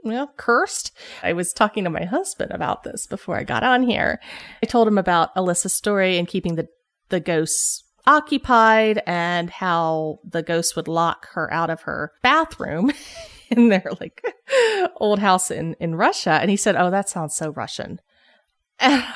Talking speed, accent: 170 wpm, American